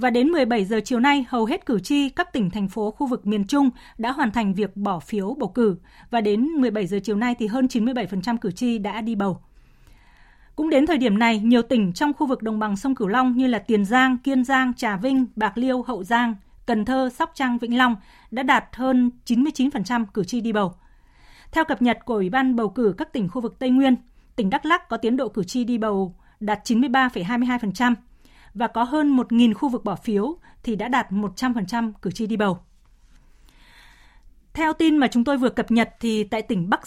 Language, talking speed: Vietnamese, 220 wpm